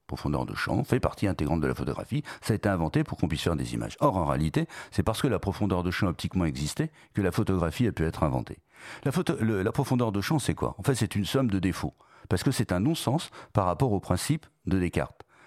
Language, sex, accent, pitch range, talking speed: French, male, French, 80-115 Hz, 245 wpm